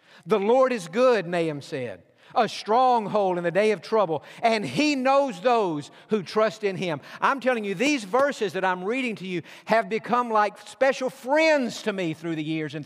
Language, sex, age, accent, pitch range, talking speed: English, male, 50-69, American, 155-225 Hz, 195 wpm